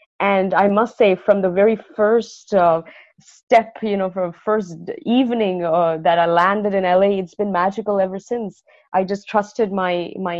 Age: 30-49